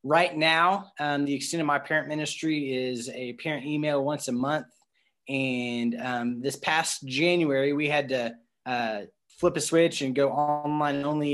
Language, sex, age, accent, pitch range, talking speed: English, male, 20-39, American, 135-160 Hz, 170 wpm